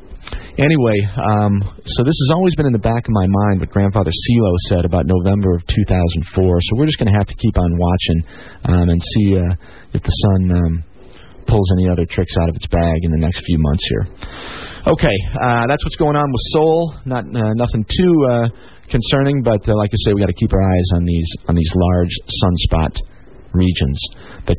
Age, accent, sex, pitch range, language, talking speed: 40-59, American, male, 90-115 Hz, English, 205 wpm